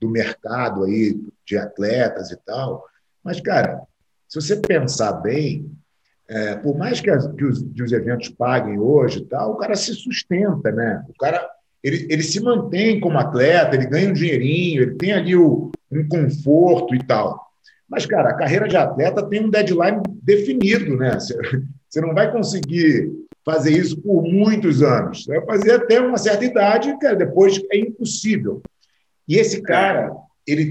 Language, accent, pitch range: English, Brazilian, 130-190 Hz